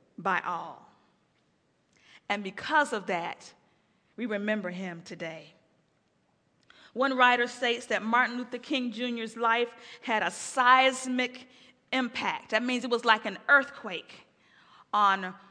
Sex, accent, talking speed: female, American, 120 wpm